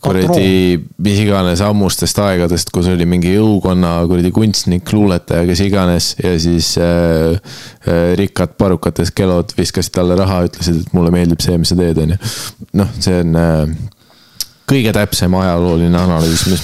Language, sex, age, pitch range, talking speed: English, male, 20-39, 85-100 Hz, 150 wpm